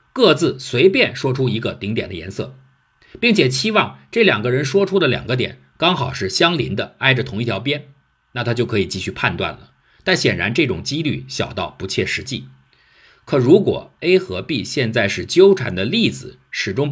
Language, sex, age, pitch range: Chinese, male, 50-69, 105-140 Hz